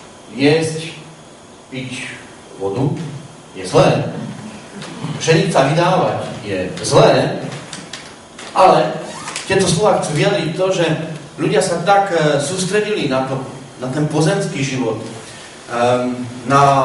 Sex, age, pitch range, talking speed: male, 40-59, 130-165 Hz, 95 wpm